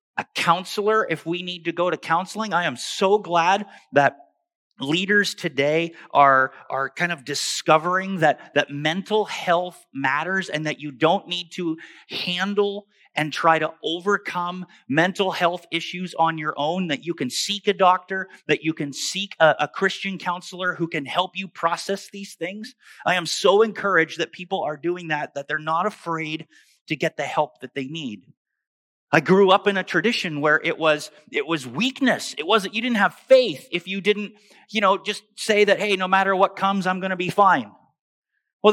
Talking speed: 185 wpm